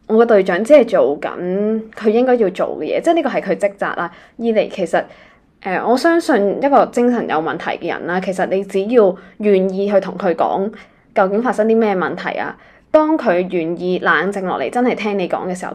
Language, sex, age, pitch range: Chinese, female, 20-39, 180-235 Hz